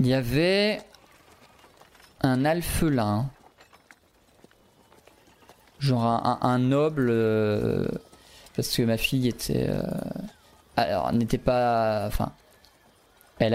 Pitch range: 115-145 Hz